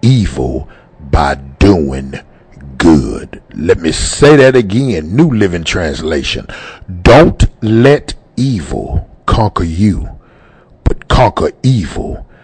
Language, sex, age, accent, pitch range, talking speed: English, male, 60-79, American, 80-120 Hz, 95 wpm